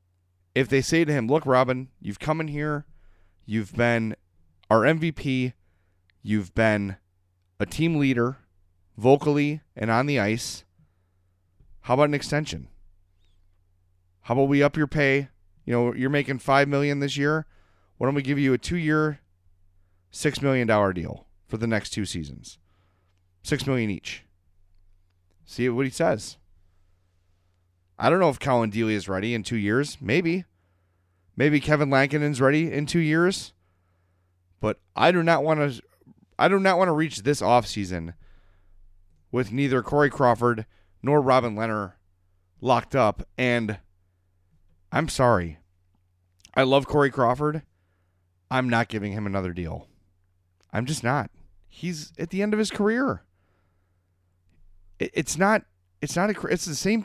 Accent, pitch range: American, 90-140 Hz